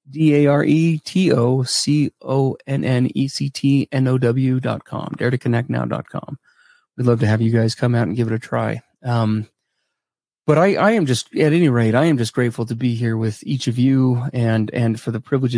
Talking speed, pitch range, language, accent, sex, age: 230 wpm, 110-130 Hz, English, American, male, 30-49